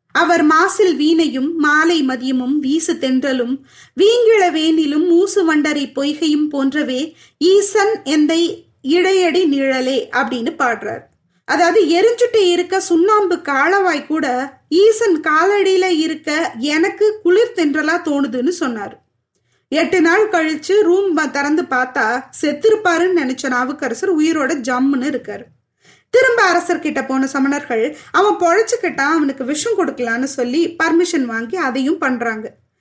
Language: Tamil